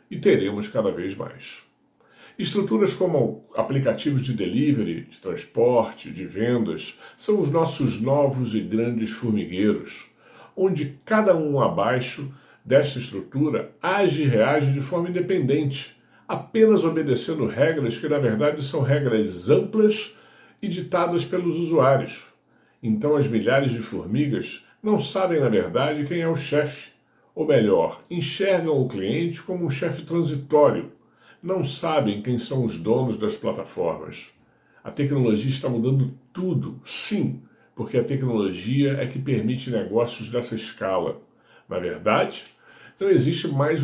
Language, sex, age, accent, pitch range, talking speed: Portuguese, male, 60-79, Brazilian, 120-170 Hz, 130 wpm